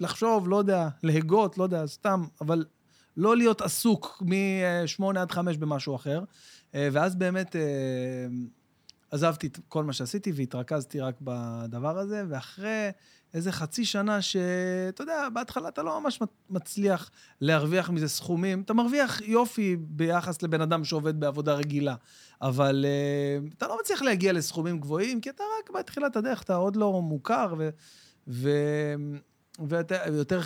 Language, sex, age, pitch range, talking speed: Hebrew, male, 30-49, 140-185 Hz, 135 wpm